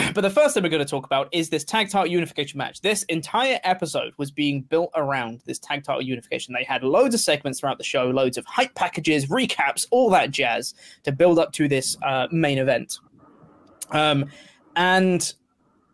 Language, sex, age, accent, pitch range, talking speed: English, male, 20-39, British, 145-185 Hz, 195 wpm